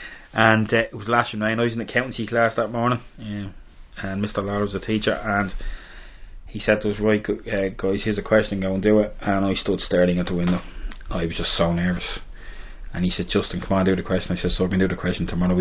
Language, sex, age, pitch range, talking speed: English, male, 20-39, 90-105 Hz, 260 wpm